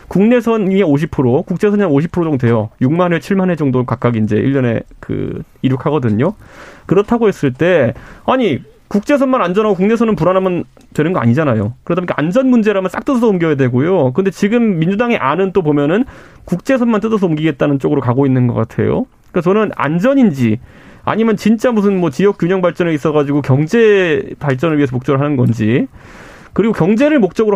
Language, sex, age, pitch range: Korean, male, 30-49, 135-205 Hz